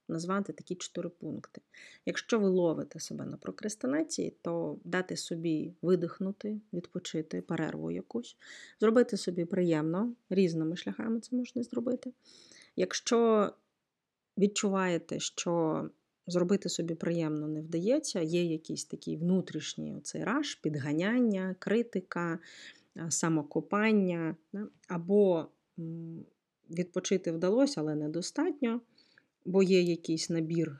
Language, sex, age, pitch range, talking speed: Ukrainian, female, 30-49, 155-190 Hz, 95 wpm